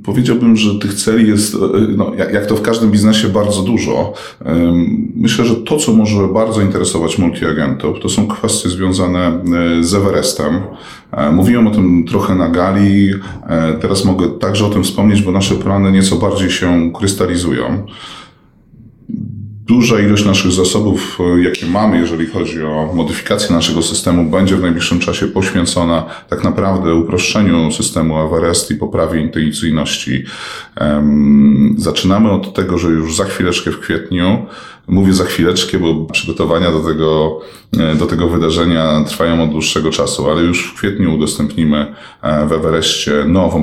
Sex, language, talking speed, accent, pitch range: male, Polish, 140 wpm, native, 75-95 Hz